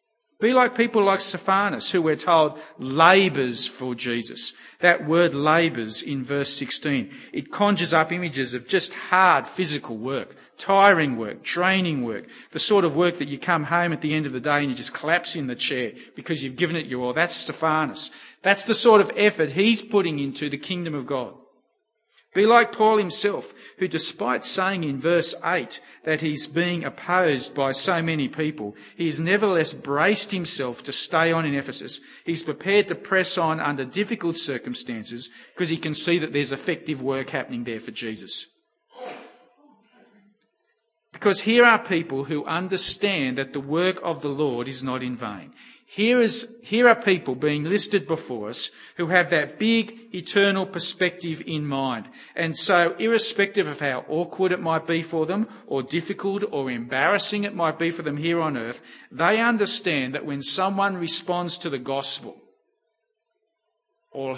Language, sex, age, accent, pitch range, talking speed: English, male, 50-69, Australian, 145-200 Hz, 170 wpm